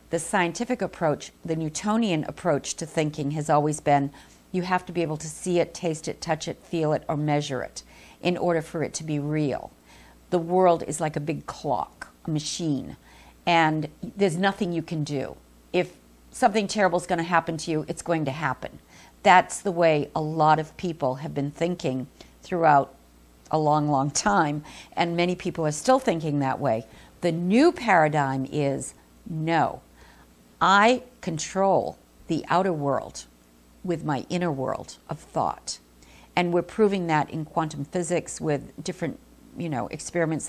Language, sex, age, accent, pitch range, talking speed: English, female, 50-69, American, 135-175 Hz, 170 wpm